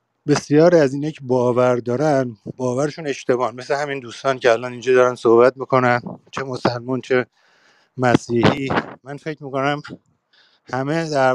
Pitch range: 120-145 Hz